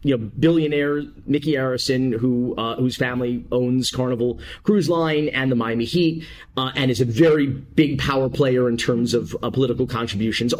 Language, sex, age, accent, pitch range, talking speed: English, male, 40-59, American, 115-165 Hz, 175 wpm